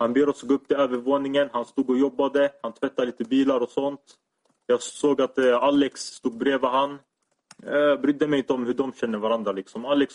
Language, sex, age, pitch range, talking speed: Swedish, male, 20-39, 125-145 Hz, 205 wpm